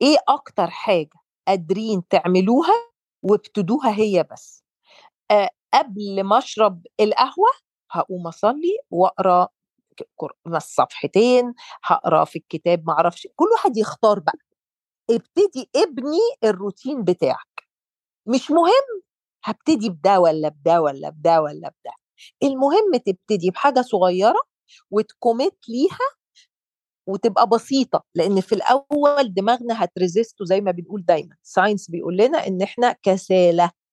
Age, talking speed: 40-59, 110 wpm